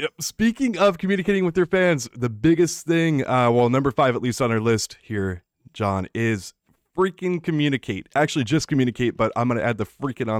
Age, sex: 20-39, male